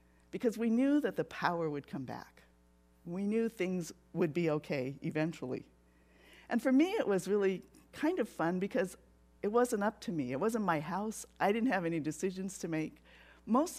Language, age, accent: English, 50-69, American